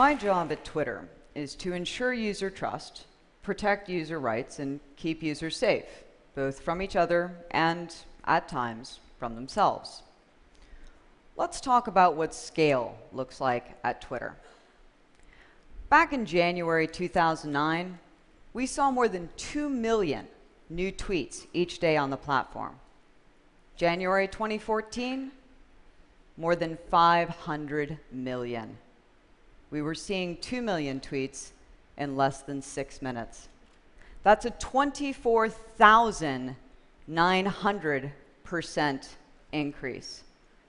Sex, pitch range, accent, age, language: female, 145-205 Hz, American, 40-59, Chinese